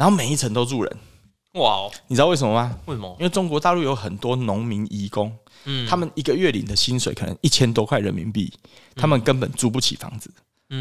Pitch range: 115-170 Hz